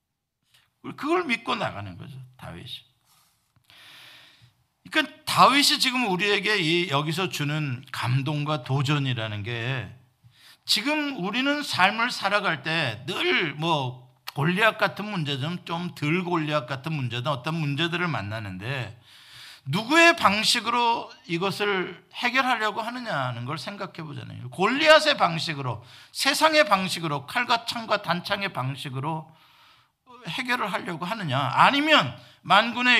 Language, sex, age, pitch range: Korean, male, 50-69, 125-200 Hz